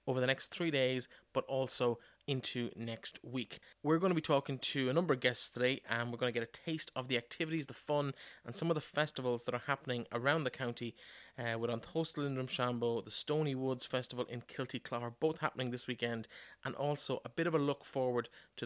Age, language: 30-49, English